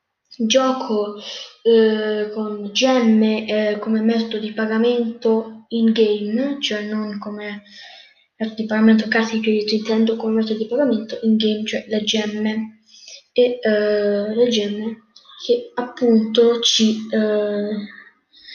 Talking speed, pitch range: 125 wpm, 215-245 Hz